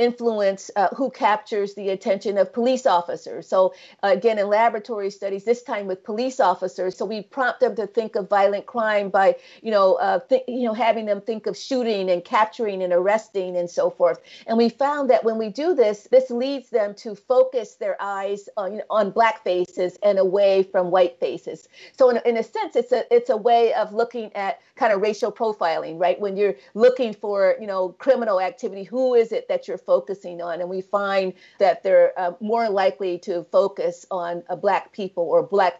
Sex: female